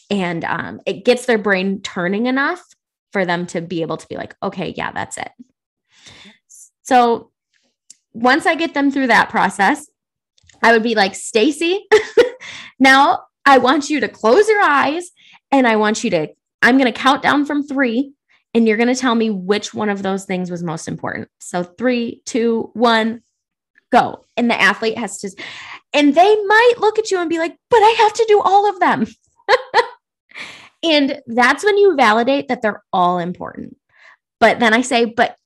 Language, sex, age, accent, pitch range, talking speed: English, female, 20-39, American, 205-300 Hz, 185 wpm